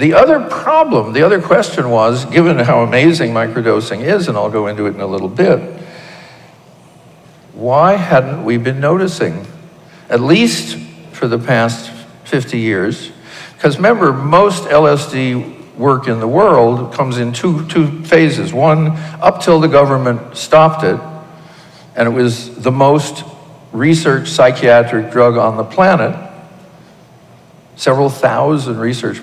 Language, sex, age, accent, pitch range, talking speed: English, male, 60-79, American, 120-160 Hz, 140 wpm